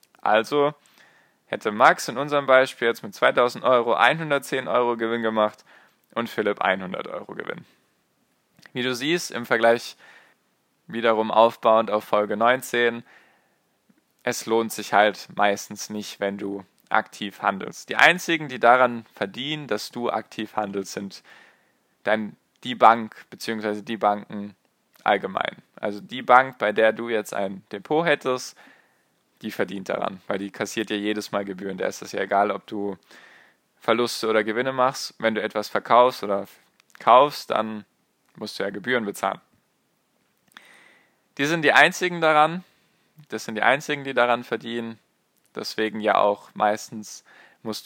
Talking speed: 145 wpm